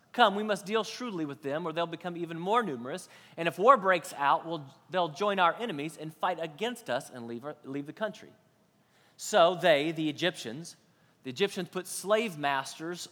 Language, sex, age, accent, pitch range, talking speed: English, male, 30-49, American, 160-205 Hz, 190 wpm